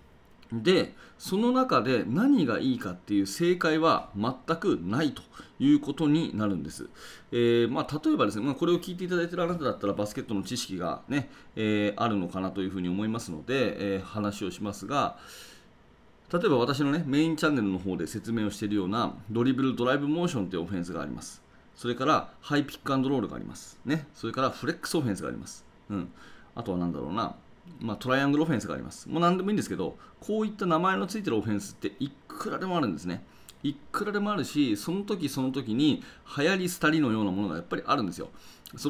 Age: 30-49